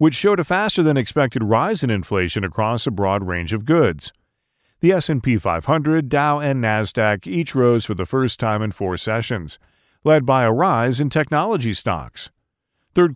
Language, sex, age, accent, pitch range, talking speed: English, male, 40-59, American, 105-145 Hz, 165 wpm